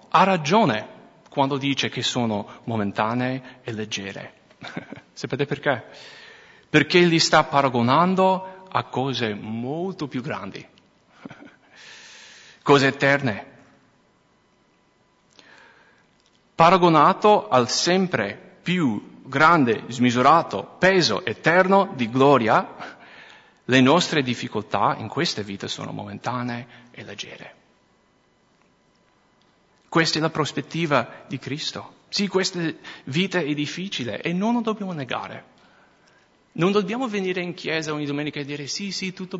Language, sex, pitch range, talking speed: English, male, 135-190 Hz, 105 wpm